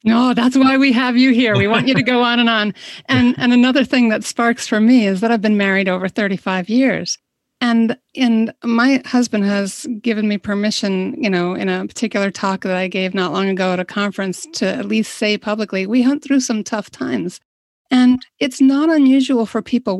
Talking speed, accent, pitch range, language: 215 wpm, American, 185-235 Hz, English